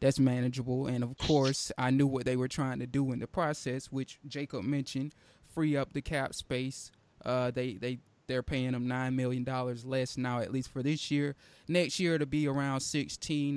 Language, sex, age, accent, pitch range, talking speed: English, male, 20-39, American, 125-145 Hz, 205 wpm